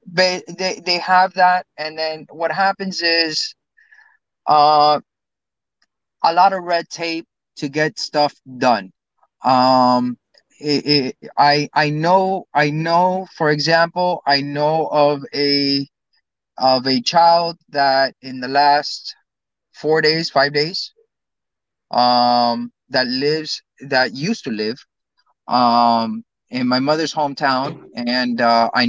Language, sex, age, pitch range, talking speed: English, male, 30-49, 130-160 Hz, 125 wpm